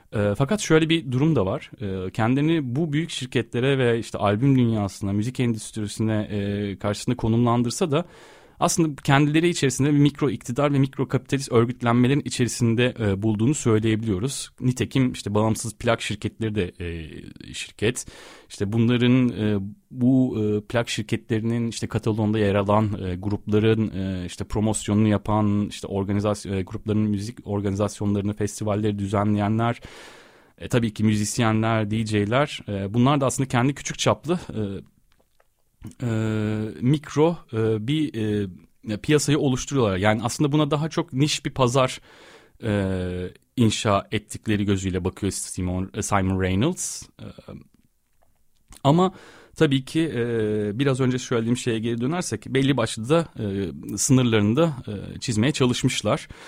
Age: 30-49